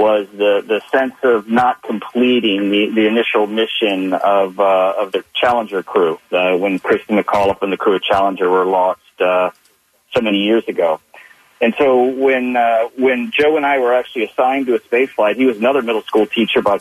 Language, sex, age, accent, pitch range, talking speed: English, male, 40-59, American, 110-135 Hz, 195 wpm